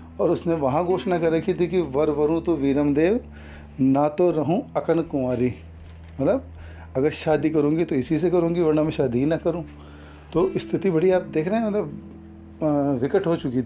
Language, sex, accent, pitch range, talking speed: Hindi, male, native, 140-180 Hz, 185 wpm